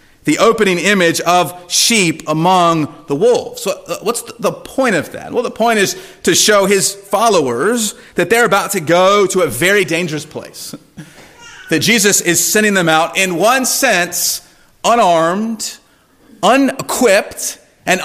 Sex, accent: male, American